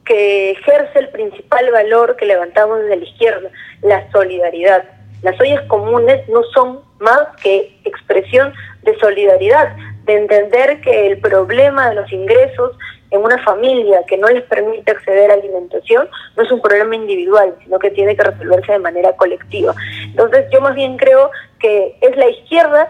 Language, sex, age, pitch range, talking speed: Spanish, female, 20-39, 200-295 Hz, 165 wpm